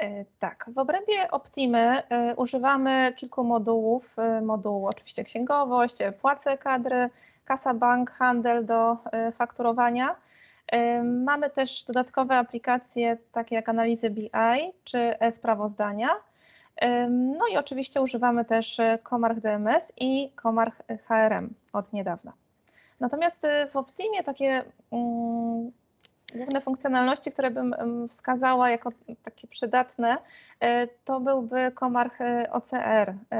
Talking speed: 100 wpm